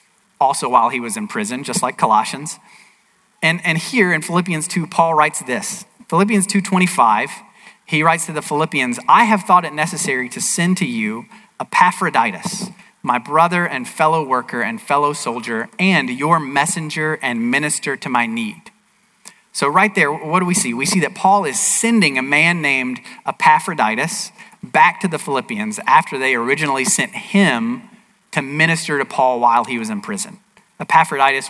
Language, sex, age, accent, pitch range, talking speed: English, male, 40-59, American, 130-200 Hz, 165 wpm